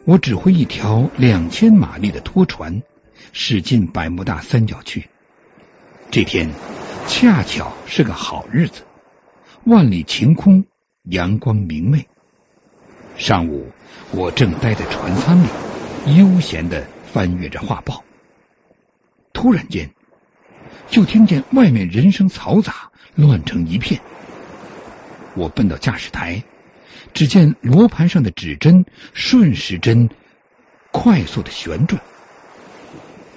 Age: 60-79